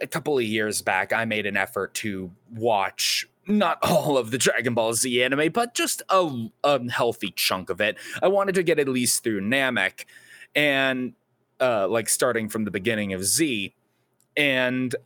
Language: English